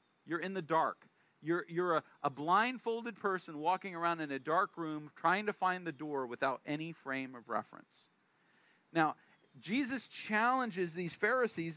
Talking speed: 160 wpm